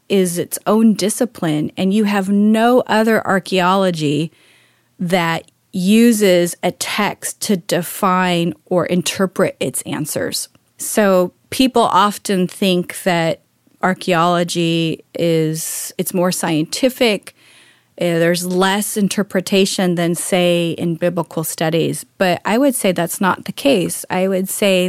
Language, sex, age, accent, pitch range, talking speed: English, female, 30-49, American, 170-200 Hz, 120 wpm